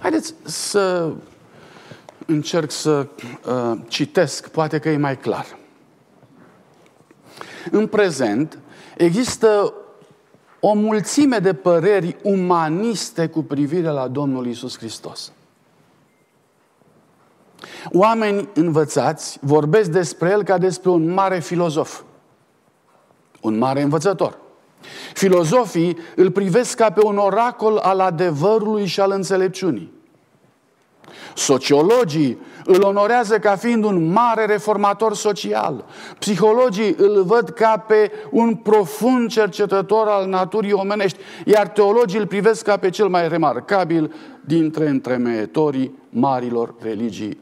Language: Romanian